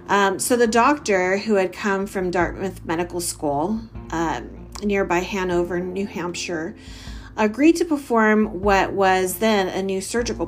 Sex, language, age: female, English, 30-49